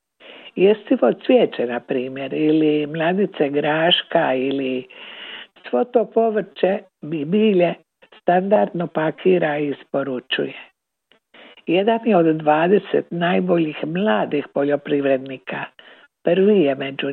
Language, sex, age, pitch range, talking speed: Croatian, female, 60-79, 150-200 Hz, 90 wpm